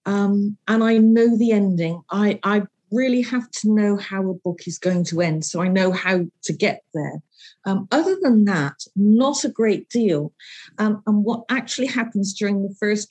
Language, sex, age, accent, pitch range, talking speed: English, female, 50-69, British, 185-225 Hz, 190 wpm